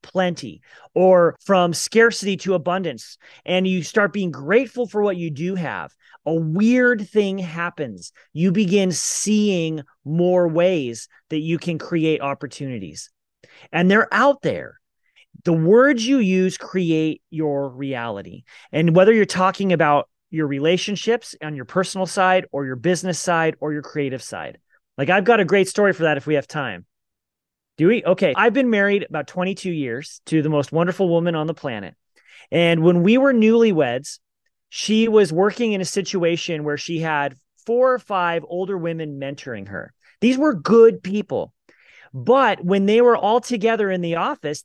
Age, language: 30-49, English